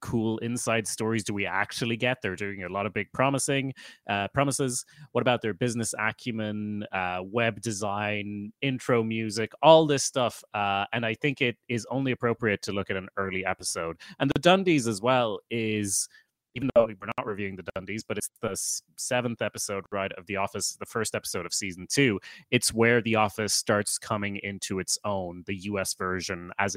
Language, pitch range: English, 100-125 Hz